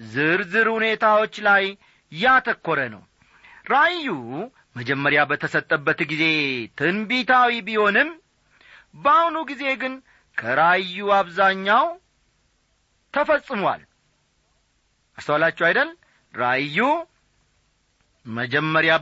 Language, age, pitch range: Amharic, 40-59, 160-255 Hz